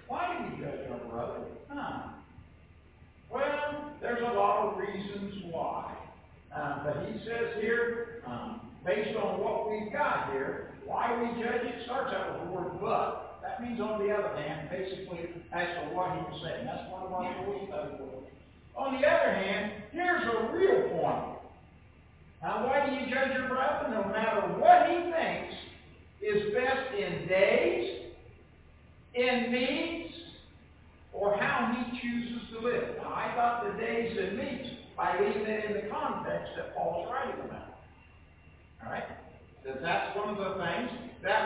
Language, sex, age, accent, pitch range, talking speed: English, male, 60-79, American, 190-250 Hz, 160 wpm